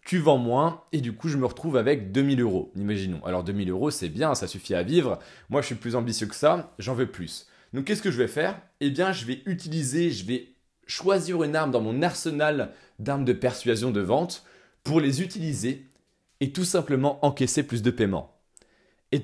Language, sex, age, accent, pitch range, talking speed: French, male, 20-39, French, 115-155 Hz, 210 wpm